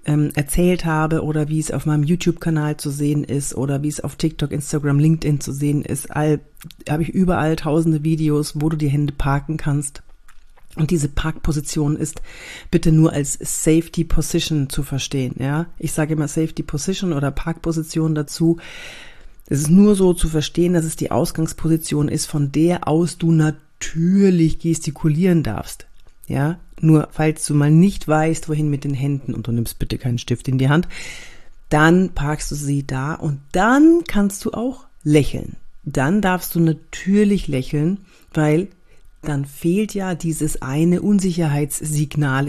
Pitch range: 140-165 Hz